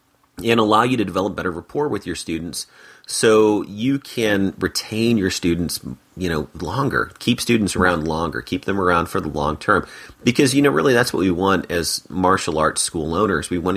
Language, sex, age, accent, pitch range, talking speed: English, male, 30-49, American, 80-105 Hz, 195 wpm